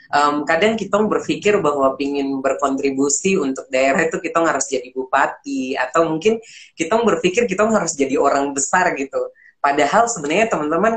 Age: 20-39